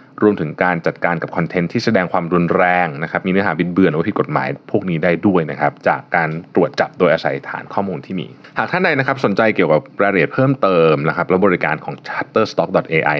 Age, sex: 20-39, male